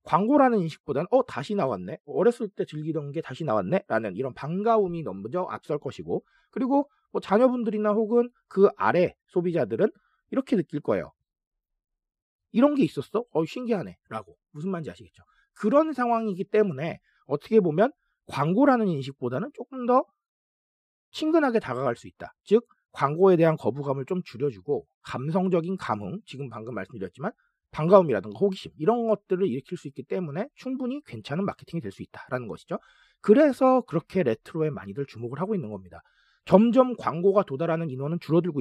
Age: 40-59